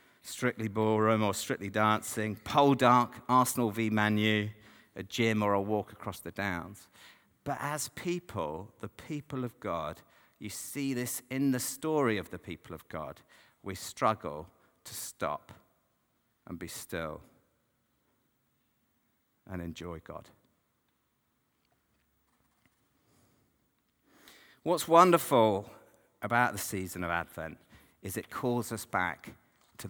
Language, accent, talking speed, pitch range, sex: English, British, 120 wpm, 100-125 Hz, male